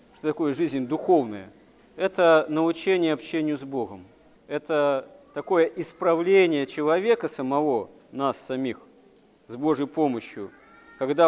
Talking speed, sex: 95 wpm, male